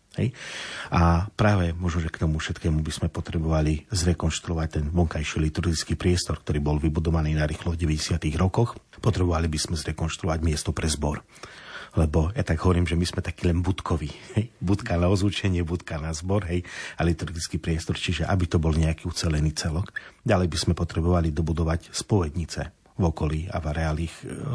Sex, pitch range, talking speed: male, 80-90 Hz, 165 wpm